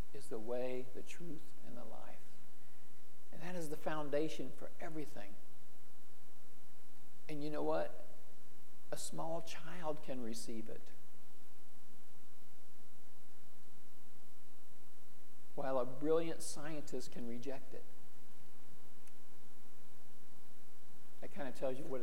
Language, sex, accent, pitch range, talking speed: English, male, American, 125-175 Hz, 105 wpm